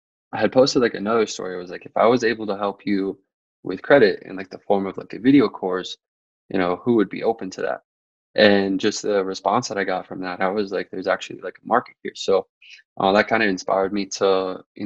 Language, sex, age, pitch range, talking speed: English, male, 20-39, 95-110 Hz, 250 wpm